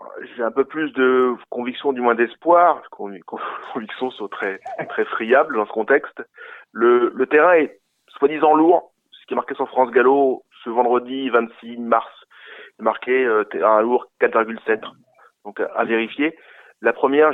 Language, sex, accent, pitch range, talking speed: French, male, French, 115-145 Hz, 155 wpm